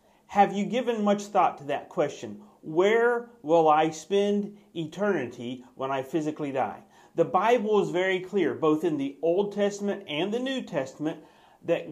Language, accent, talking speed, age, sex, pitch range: English, American, 160 wpm, 40-59, male, 150-200 Hz